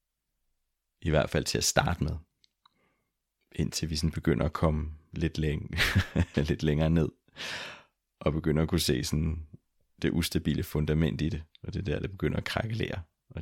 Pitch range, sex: 75-95 Hz, male